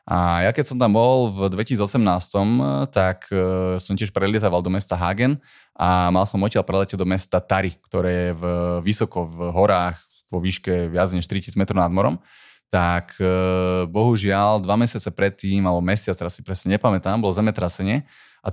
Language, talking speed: Slovak, 170 wpm